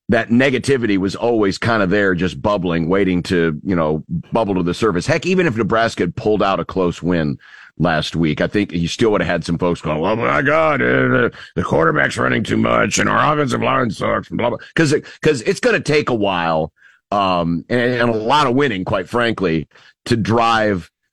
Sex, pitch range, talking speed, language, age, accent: male, 90-120 Hz, 215 wpm, English, 50-69, American